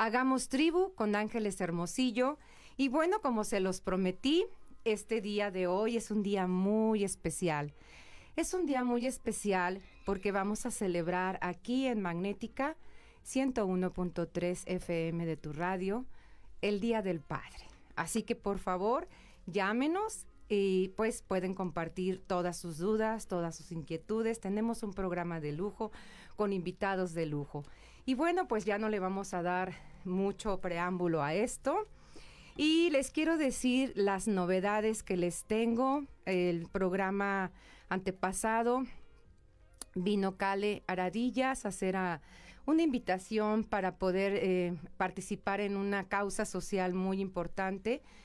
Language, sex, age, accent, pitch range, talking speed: Spanish, female, 40-59, Mexican, 180-220 Hz, 135 wpm